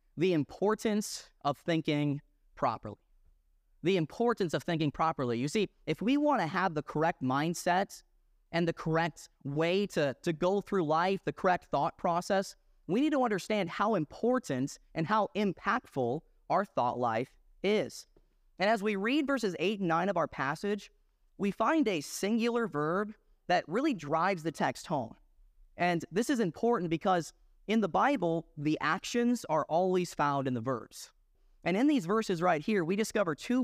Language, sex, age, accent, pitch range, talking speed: English, male, 30-49, American, 145-200 Hz, 165 wpm